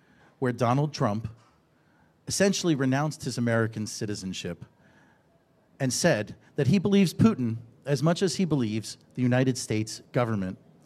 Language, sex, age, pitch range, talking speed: English, male, 40-59, 120-160 Hz, 125 wpm